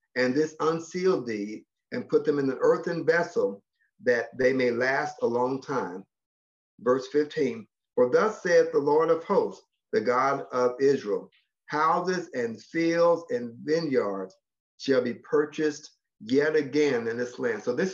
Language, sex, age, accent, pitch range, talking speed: English, male, 50-69, American, 130-185 Hz, 155 wpm